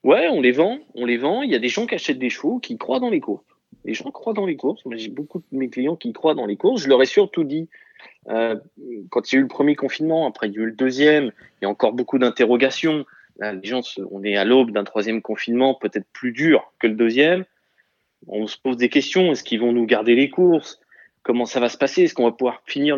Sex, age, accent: male, 20-39, French